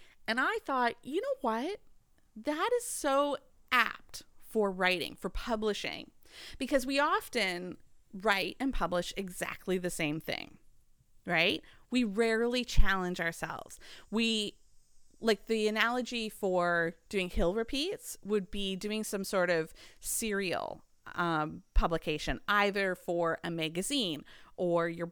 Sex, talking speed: female, 125 wpm